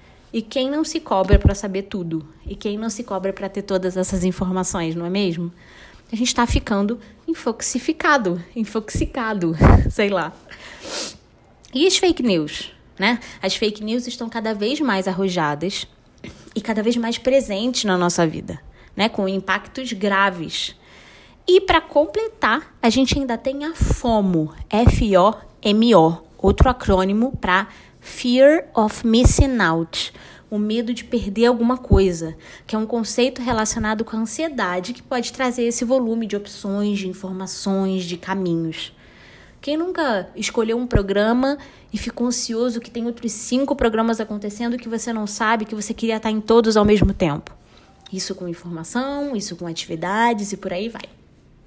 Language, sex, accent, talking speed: Portuguese, female, Brazilian, 155 wpm